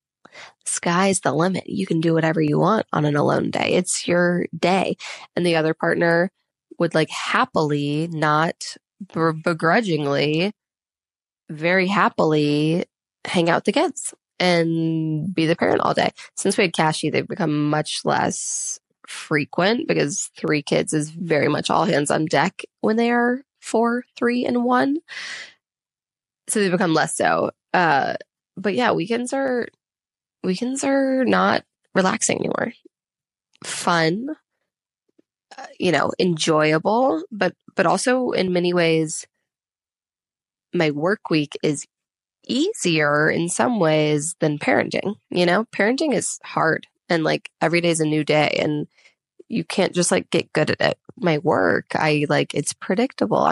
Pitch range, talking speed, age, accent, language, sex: 155-225 Hz, 140 wpm, 20-39, American, English, female